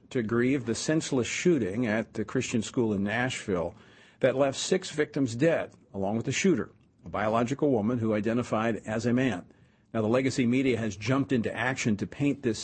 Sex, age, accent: male, 50-69, American